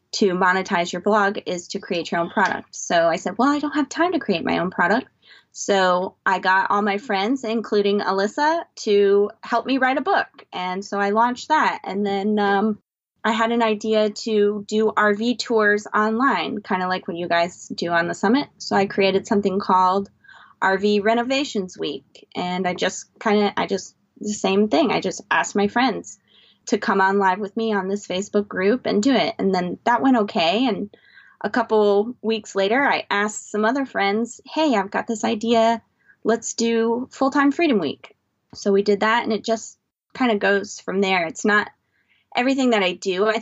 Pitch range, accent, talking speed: 195-230 Hz, American, 200 wpm